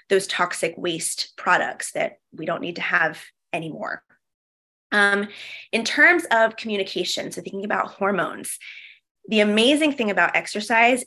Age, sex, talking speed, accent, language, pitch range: 20-39, female, 135 wpm, American, English, 180-220 Hz